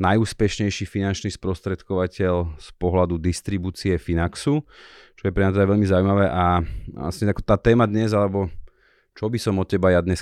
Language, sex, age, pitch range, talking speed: Slovak, male, 30-49, 85-100 Hz, 165 wpm